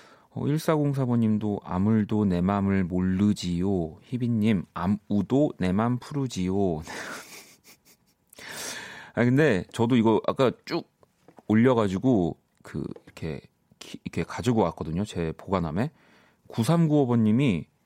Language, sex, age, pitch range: Korean, male, 30-49, 90-140 Hz